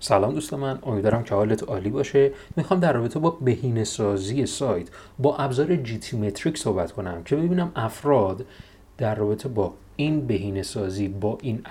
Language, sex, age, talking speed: Persian, male, 30-49, 150 wpm